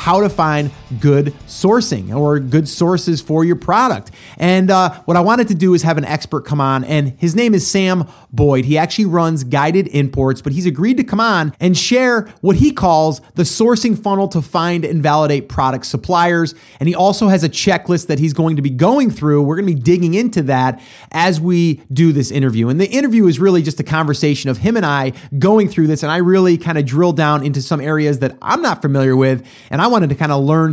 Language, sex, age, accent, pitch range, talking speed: English, male, 30-49, American, 145-185 Hz, 230 wpm